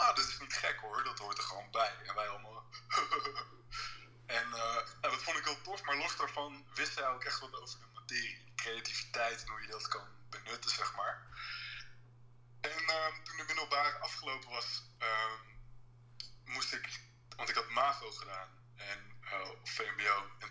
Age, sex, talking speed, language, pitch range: 20-39, male, 175 wpm, Dutch, 115-125 Hz